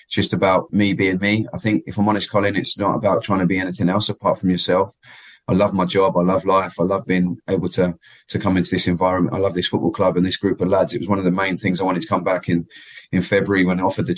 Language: English